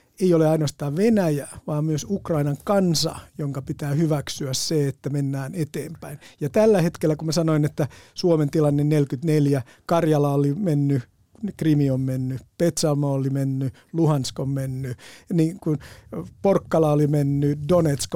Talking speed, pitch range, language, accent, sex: 140 wpm, 140-170 Hz, Finnish, native, male